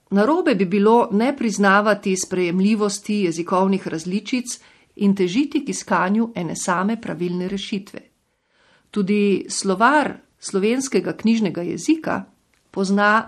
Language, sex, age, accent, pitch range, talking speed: Italian, female, 50-69, Croatian, 180-235 Hz, 100 wpm